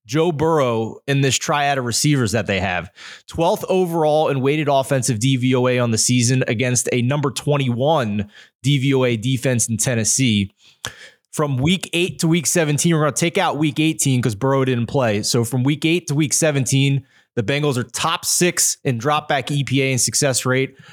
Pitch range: 130-155 Hz